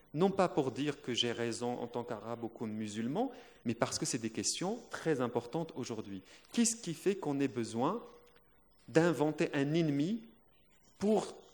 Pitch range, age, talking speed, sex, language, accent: 120-160 Hz, 30-49, 165 wpm, male, Spanish, French